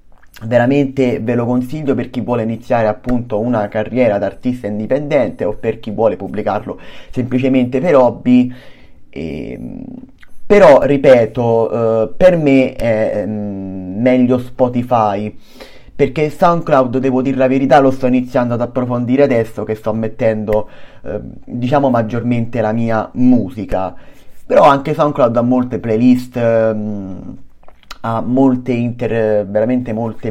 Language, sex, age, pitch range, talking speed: Italian, male, 30-49, 110-130 Hz, 125 wpm